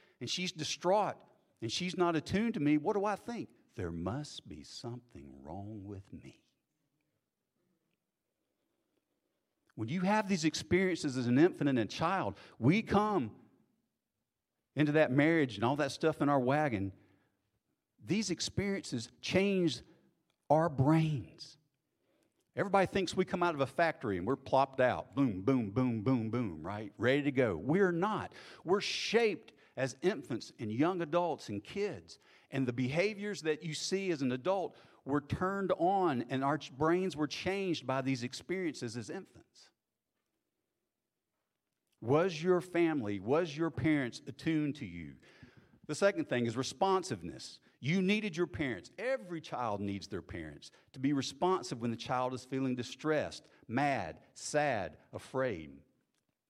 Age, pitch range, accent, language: 50-69, 120-175 Hz, American, English